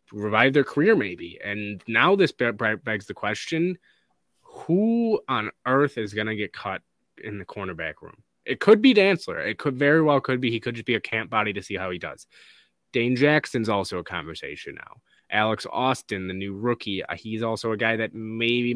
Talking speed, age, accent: 195 wpm, 20-39, American